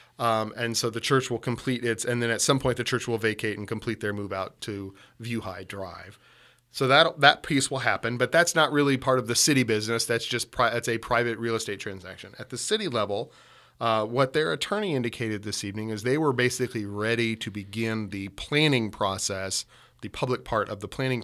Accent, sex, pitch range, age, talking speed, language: American, male, 105-125 Hz, 40-59, 220 wpm, English